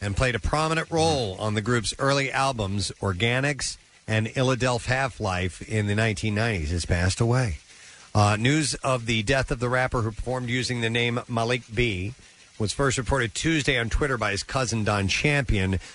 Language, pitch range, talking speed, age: English, 100-125 Hz, 175 wpm, 40-59